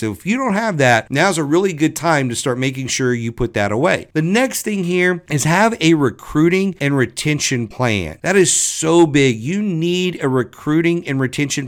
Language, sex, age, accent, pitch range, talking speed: English, male, 50-69, American, 125-165 Hz, 205 wpm